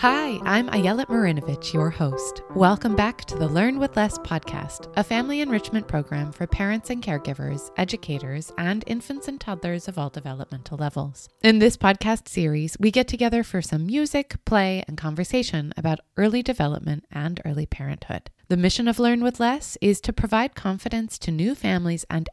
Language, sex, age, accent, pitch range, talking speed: English, female, 20-39, American, 150-220 Hz, 170 wpm